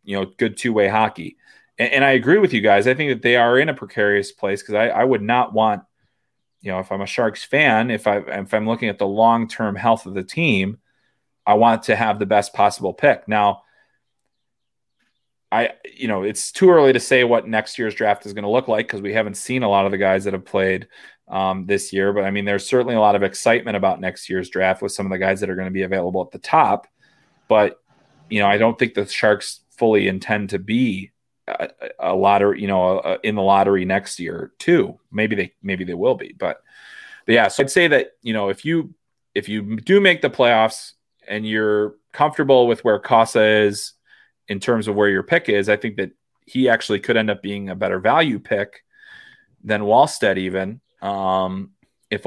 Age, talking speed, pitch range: 30-49, 225 wpm, 95-115 Hz